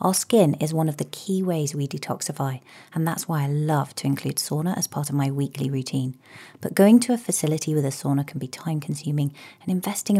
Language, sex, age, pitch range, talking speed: English, female, 30-49, 150-175 Hz, 220 wpm